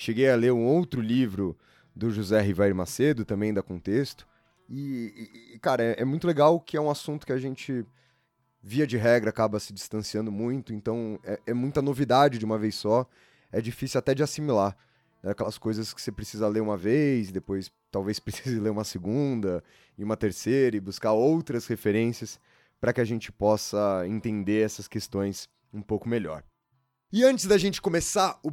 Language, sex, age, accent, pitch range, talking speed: Portuguese, male, 20-39, Brazilian, 110-160 Hz, 180 wpm